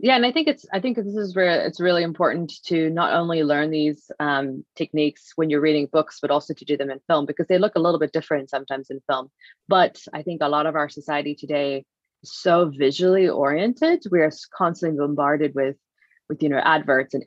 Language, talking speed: English, 220 wpm